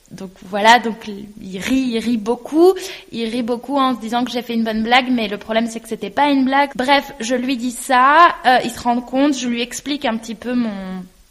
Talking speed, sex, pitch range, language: 245 wpm, female, 220-255 Hz, French